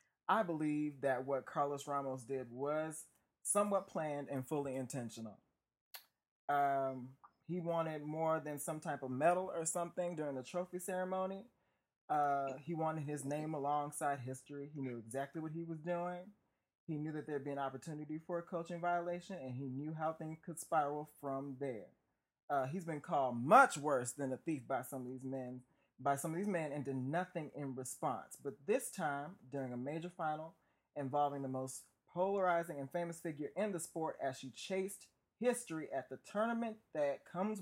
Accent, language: American, English